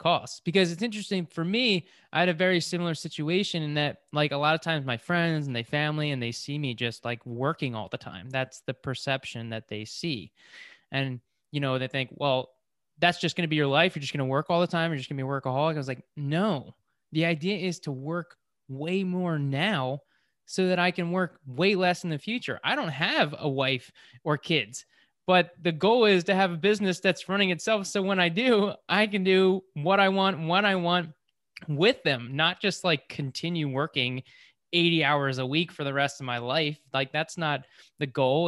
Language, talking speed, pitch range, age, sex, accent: English, 225 wpm, 135-175 Hz, 20-39, male, American